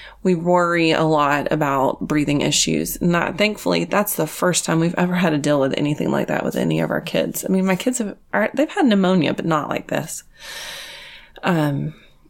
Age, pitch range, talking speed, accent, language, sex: 30-49, 155-195 Hz, 200 wpm, American, English, female